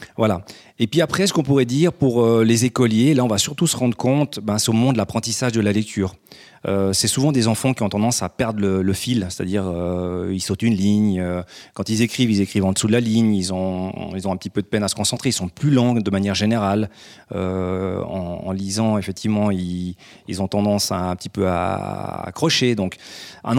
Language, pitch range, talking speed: French, 100-130 Hz, 240 wpm